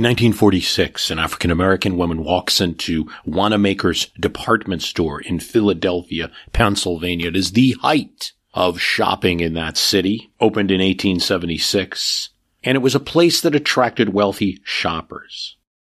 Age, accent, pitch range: 50-69, American, 85-125 Hz